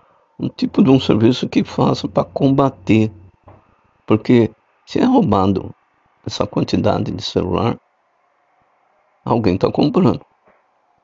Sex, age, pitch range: male, 50-69, 105-130 Hz